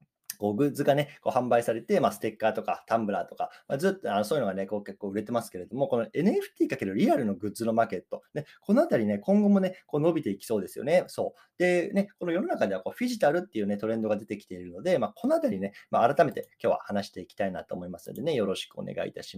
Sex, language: male, Japanese